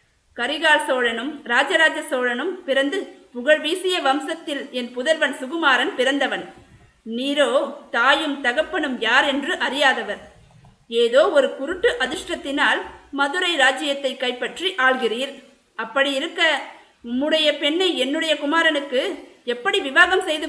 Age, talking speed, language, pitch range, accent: 50-69, 105 wpm, Tamil, 250-315 Hz, native